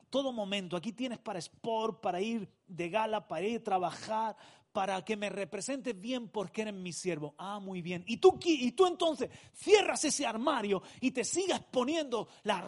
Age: 40-59